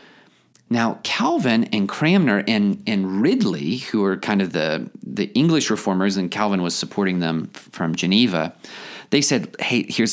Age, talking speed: 40-59, 155 wpm